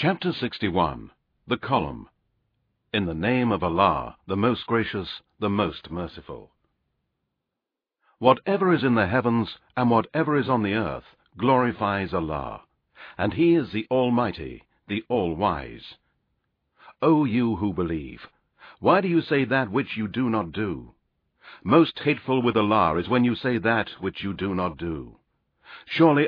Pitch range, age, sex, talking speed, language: 100-130 Hz, 60-79, male, 145 wpm, English